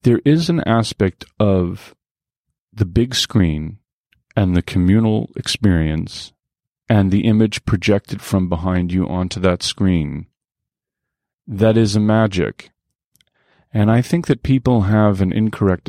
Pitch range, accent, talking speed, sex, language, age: 80-110 Hz, American, 130 wpm, male, English, 40-59